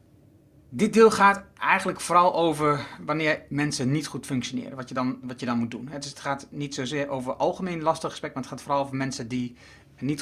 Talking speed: 195 wpm